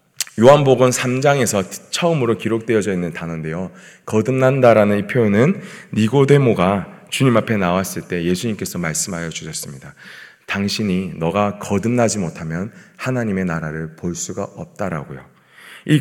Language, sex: Korean, male